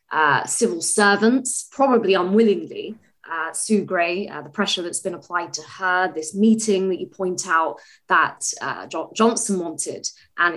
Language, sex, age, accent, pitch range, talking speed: English, female, 20-39, British, 175-220 Hz, 160 wpm